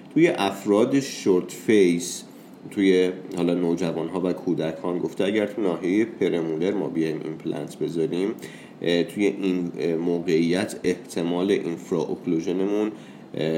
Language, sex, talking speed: English, male, 105 wpm